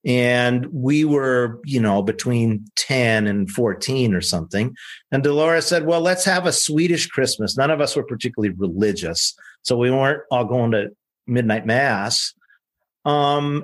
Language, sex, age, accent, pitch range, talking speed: English, male, 50-69, American, 120-160 Hz, 155 wpm